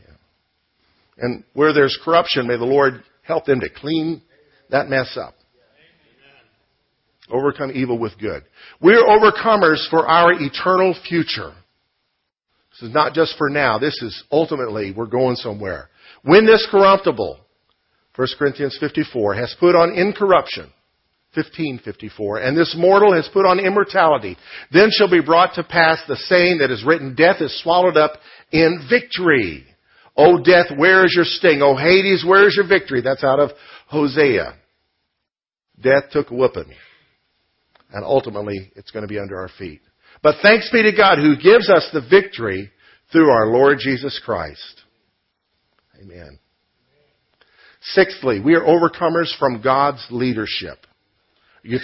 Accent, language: American, English